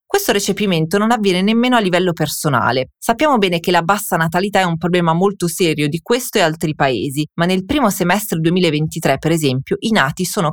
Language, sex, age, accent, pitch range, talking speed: Italian, female, 30-49, native, 160-210 Hz, 195 wpm